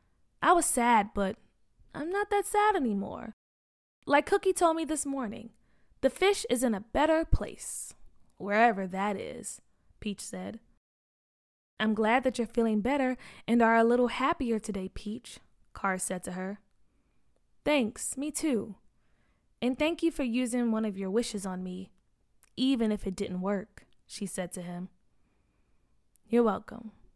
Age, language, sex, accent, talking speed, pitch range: 20-39, English, female, American, 150 wpm, 200-280 Hz